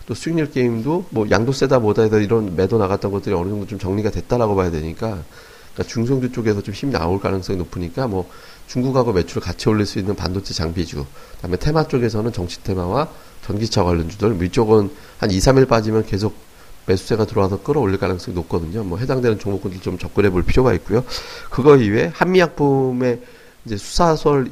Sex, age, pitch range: male, 40-59, 95-125 Hz